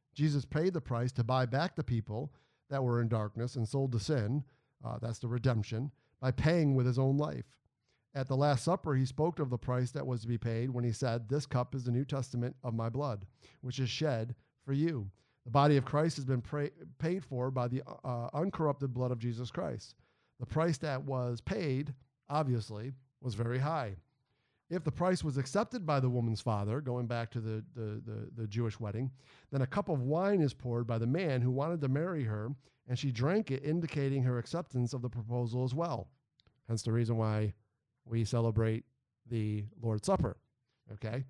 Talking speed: 200 wpm